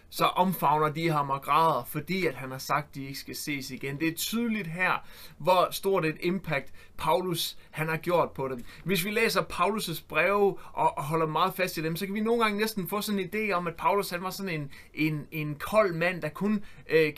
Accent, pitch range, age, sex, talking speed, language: native, 150-180 Hz, 30-49, male, 230 wpm, Danish